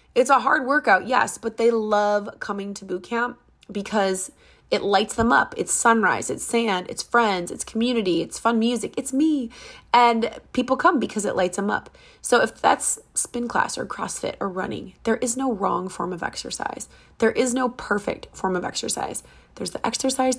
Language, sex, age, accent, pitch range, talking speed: English, female, 20-39, American, 190-270 Hz, 190 wpm